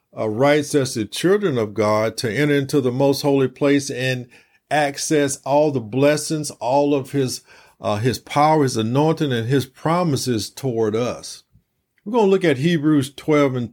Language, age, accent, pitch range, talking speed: English, 50-69, American, 135-165 Hz, 175 wpm